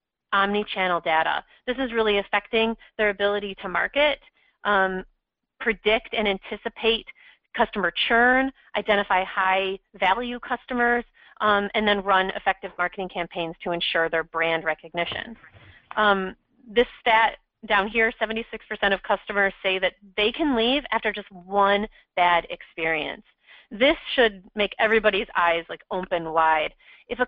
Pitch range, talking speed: 190-240 Hz, 130 wpm